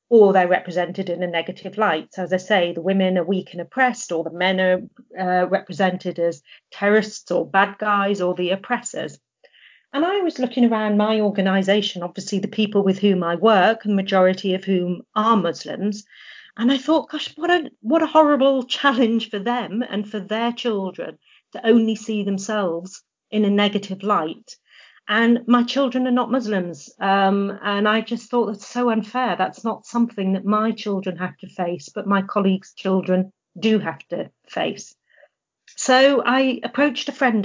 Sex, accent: female, British